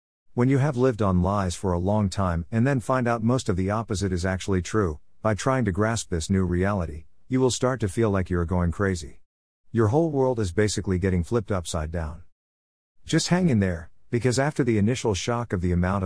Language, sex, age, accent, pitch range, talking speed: English, male, 50-69, American, 90-115 Hz, 220 wpm